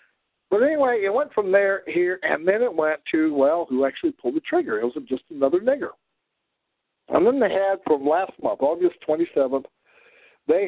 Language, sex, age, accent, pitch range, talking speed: English, male, 60-79, American, 150-205 Hz, 185 wpm